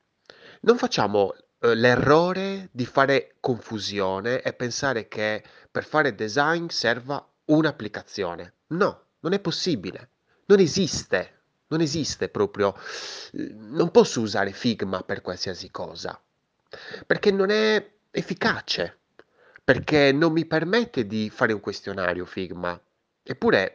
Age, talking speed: 30-49, 110 wpm